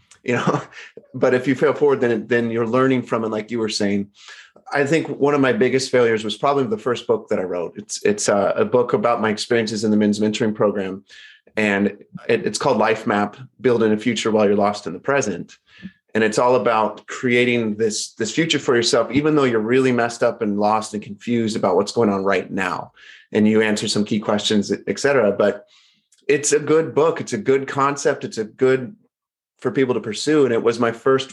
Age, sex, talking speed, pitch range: 30-49, male, 220 wpm, 110-145 Hz